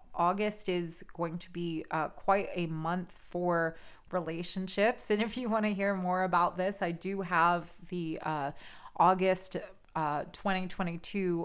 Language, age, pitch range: English, 20-39, 165-195 Hz